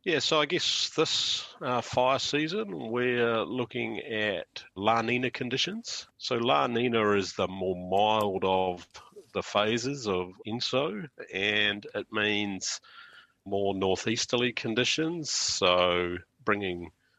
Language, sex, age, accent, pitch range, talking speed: English, male, 40-59, Australian, 95-125 Hz, 120 wpm